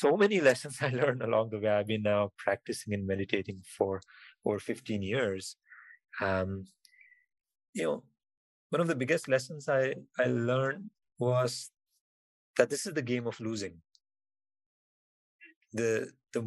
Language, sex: English, male